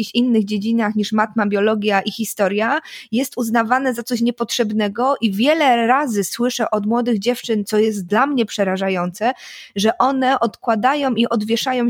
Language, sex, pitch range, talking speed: Polish, female, 215-255 Hz, 145 wpm